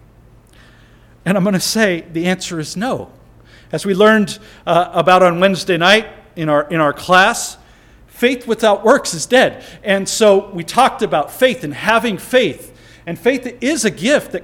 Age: 40-59